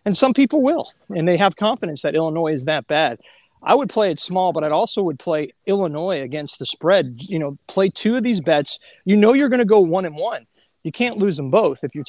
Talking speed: 250 wpm